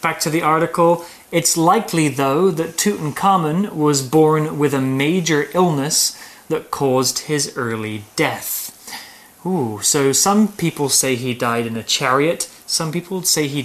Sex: male